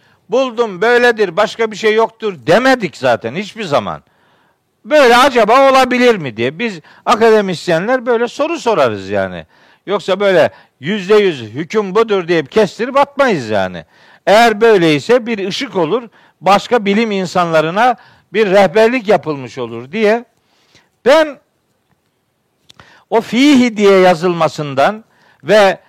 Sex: male